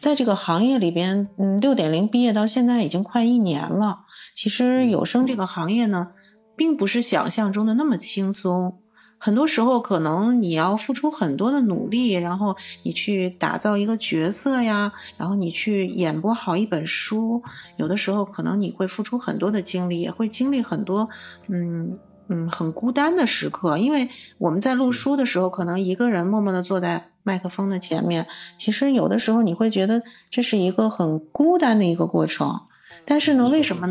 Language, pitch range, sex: Chinese, 175-225 Hz, female